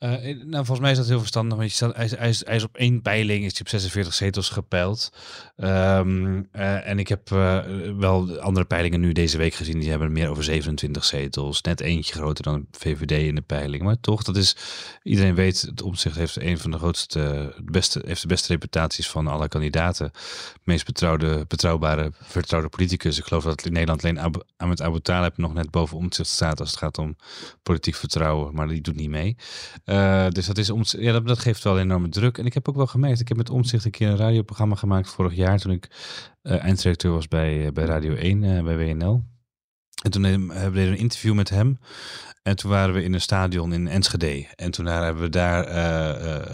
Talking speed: 210 wpm